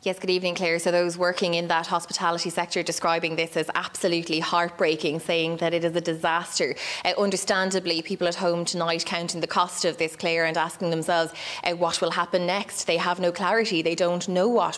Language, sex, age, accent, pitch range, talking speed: English, female, 20-39, Irish, 165-185 Hz, 205 wpm